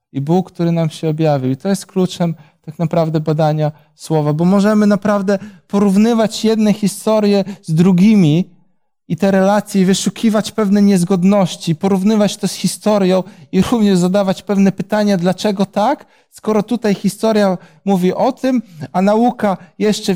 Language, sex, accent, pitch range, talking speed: Polish, male, native, 165-205 Hz, 145 wpm